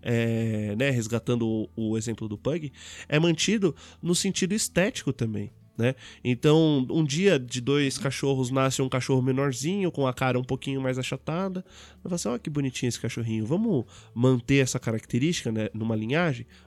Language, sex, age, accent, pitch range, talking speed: Portuguese, male, 20-39, Brazilian, 115-155 Hz, 160 wpm